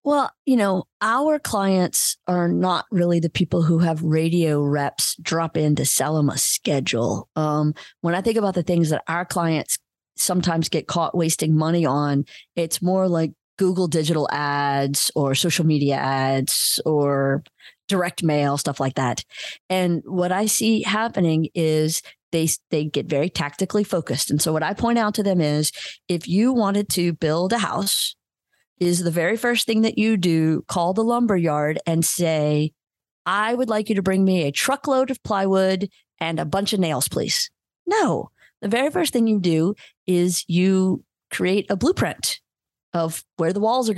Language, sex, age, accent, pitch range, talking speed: English, female, 30-49, American, 155-210 Hz, 175 wpm